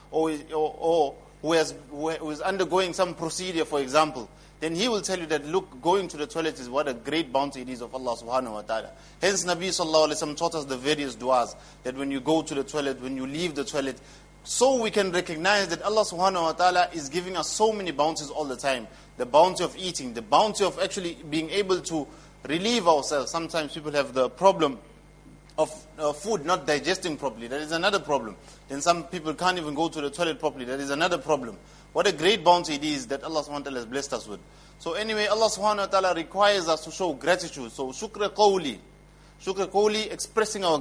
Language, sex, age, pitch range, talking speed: English, male, 30-49, 150-185 Hz, 215 wpm